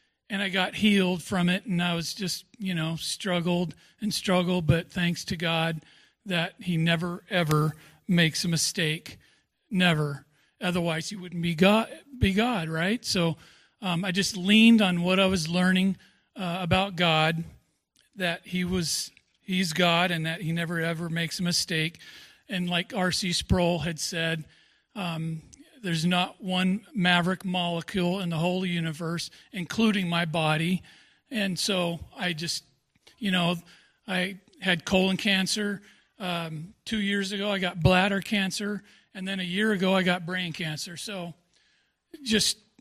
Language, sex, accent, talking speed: English, male, American, 155 wpm